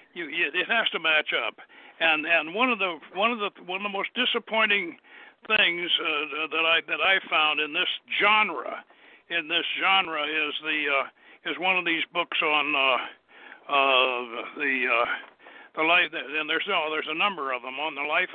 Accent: American